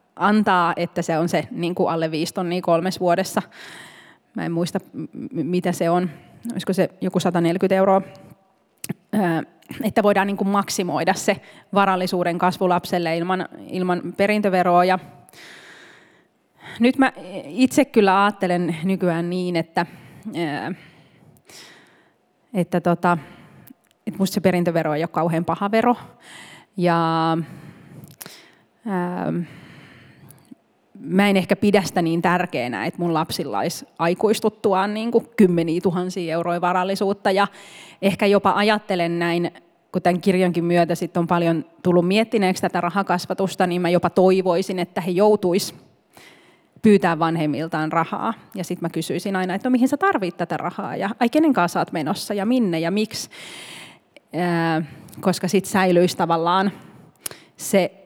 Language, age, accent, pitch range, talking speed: Finnish, 30-49, native, 170-200 Hz, 130 wpm